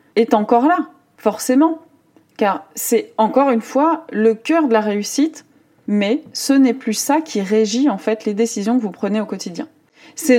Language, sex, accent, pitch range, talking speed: French, female, French, 215-270 Hz, 180 wpm